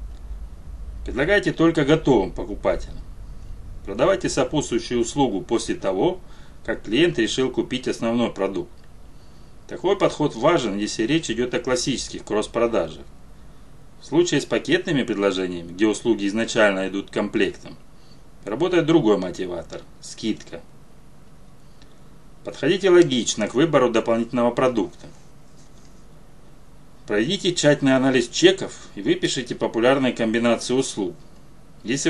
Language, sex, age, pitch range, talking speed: Russian, male, 30-49, 110-155 Hz, 100 wpm